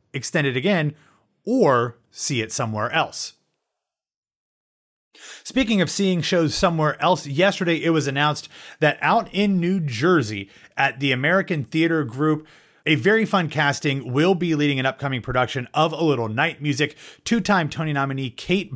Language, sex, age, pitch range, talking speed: English, male, 30-49, 125-165 Hz, 150 wpm